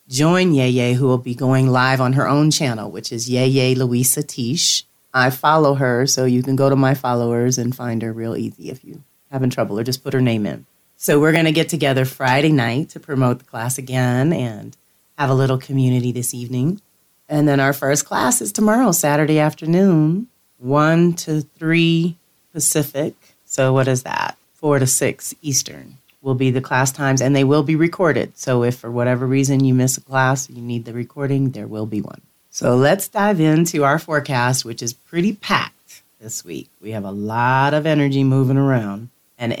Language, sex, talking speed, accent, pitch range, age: English, female, 195 wpm, American, 125-150 Hz, 30-49